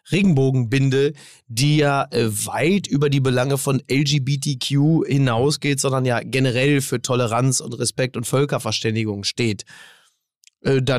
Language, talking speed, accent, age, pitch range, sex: German, 115 wpm, German, 30-49, 130-155 Hz, male